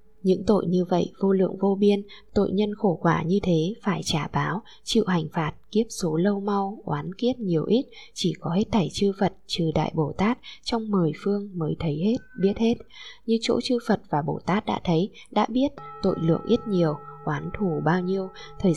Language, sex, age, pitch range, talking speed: Vietnamese, female, 20-39, 165-210 Hz, 210 wpm